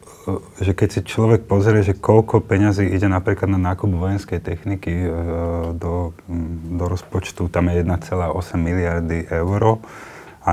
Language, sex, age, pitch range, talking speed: Slovak, male, 30-49, 85-95 Hz, 130 wpm